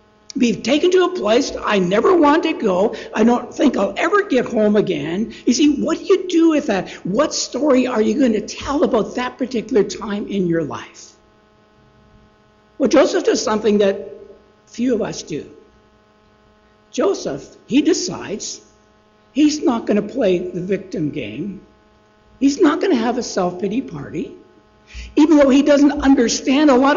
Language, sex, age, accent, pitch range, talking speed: English, male, 60-79, American, 190-285 Hz, 165 wpm